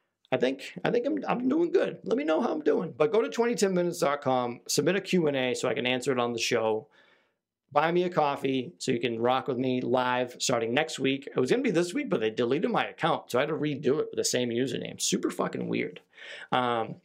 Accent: American